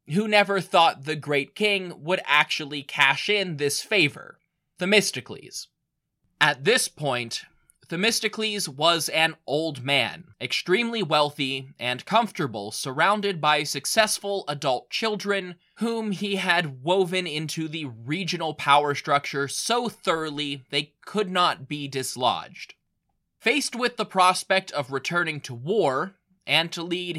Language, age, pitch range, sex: English, 20-39, 145-200 Hz, male